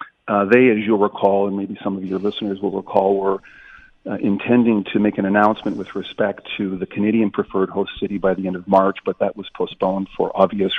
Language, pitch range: English, 95-105 Hz